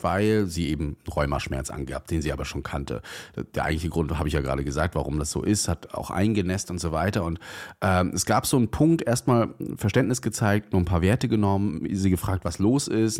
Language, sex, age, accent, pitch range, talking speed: German, male, 30-49, German, 85-115 Hz, 220 wpm